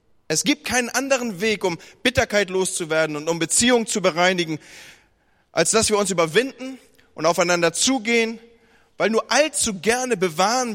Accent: German